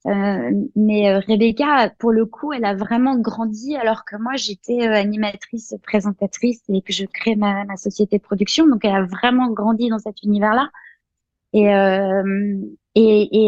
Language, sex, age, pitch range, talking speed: French, female, 20-39, 205-240 Hz, 180 wpm